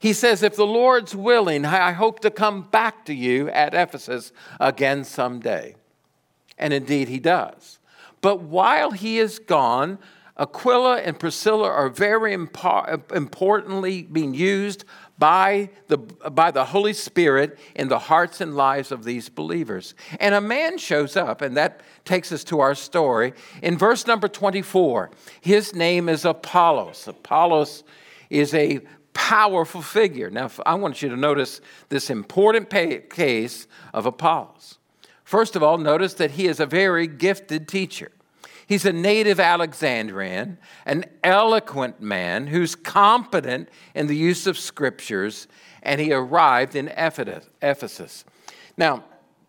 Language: English